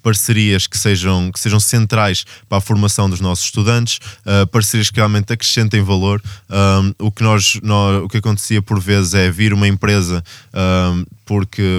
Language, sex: Portuguese, male